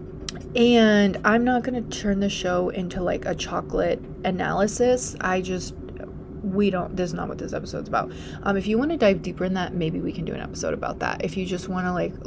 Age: 20-39